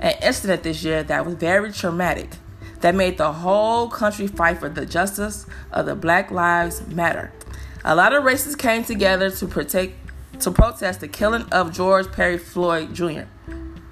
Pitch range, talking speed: 155-210 Hz, 170 wpm